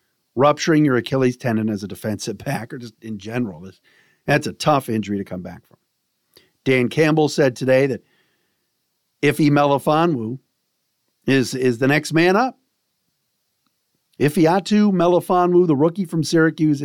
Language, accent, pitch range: English, American, 115-160 Hz